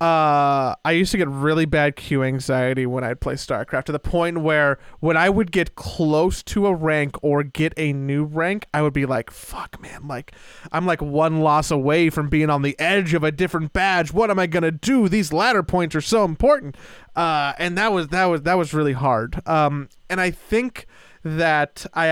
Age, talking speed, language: 20-39, 215 wpm, English